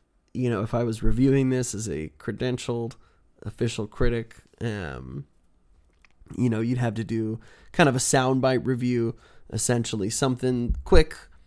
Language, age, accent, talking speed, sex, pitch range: English, 20-39, American, 140 wpm, male, 110-135 Hz